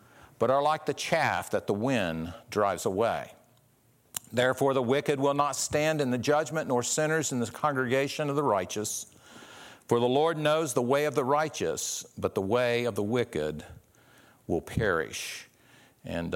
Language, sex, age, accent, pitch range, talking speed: English, male, 50-69, American, 100-125 Hz, 165 wpm